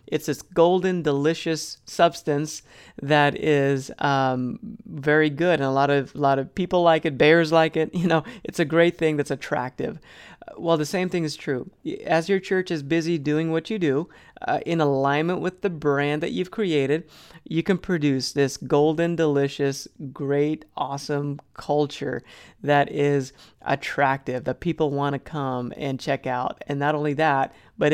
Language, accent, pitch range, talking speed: English, American, 140-165 Hz, 170 wpm